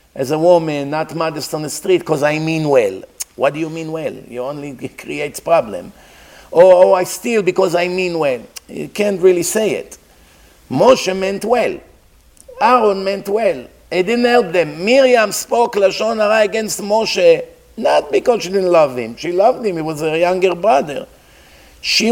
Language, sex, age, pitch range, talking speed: English, male, 50-69, 150-200 Hz, 175 wpm